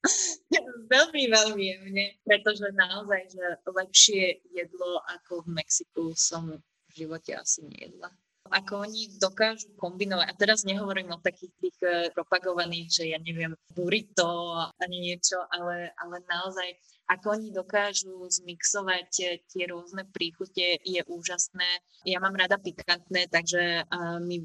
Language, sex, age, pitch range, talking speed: Slovak, female, 20-39, 175-200 Hz, 130 wpm